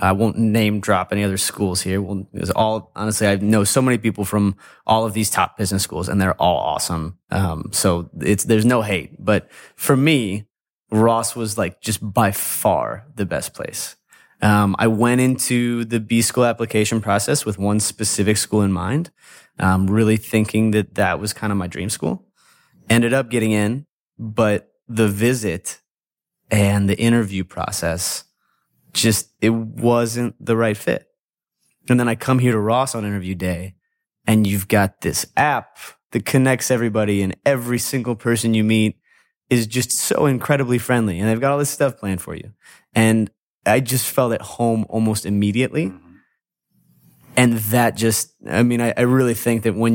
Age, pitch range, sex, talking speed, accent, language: 20-39, 100-120 Hz, male, 175 wpm, American, English